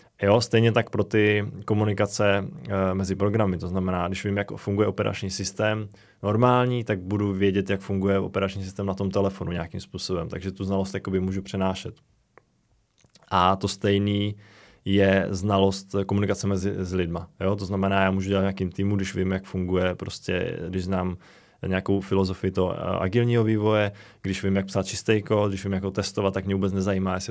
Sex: male